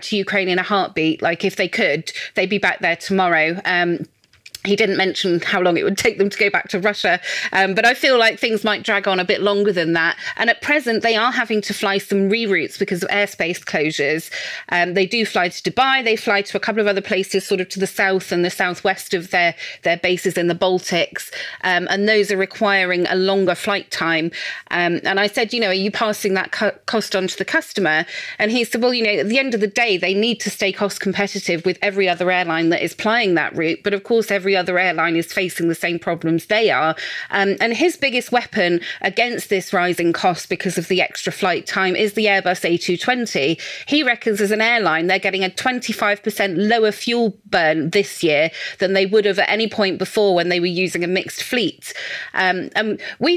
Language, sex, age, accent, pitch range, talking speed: English, female, 30-49, British, 180-215 Hz, 225 wpm